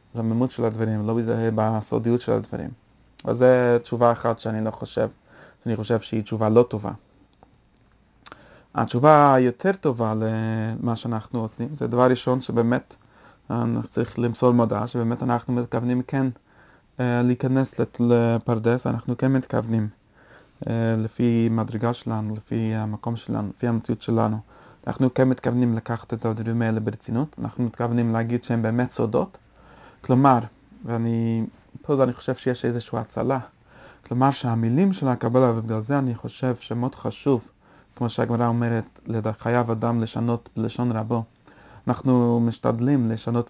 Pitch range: 115-130 Hz